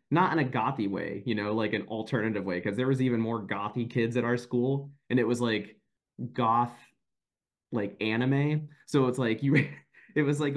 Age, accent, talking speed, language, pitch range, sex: 20-39, American, 200 wpm, English, 105-135 Hz, male